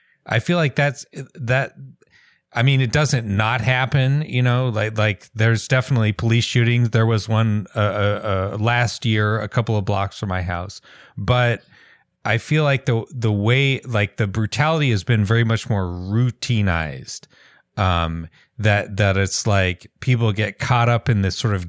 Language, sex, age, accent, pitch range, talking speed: English, male, 30-49, American, 100-120 Hz, 175 wpm